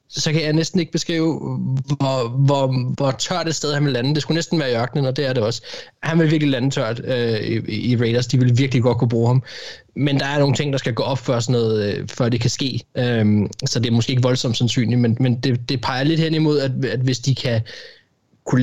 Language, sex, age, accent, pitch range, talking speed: Danish, male, 20-39, native, 115-140 Hz, 260 wpm